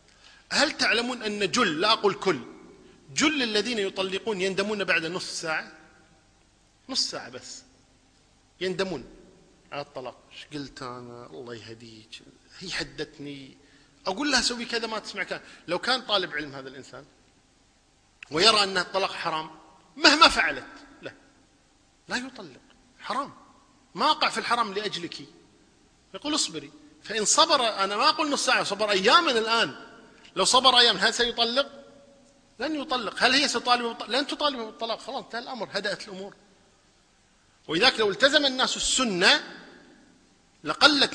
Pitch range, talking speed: 175-250 Hz, 130 wpm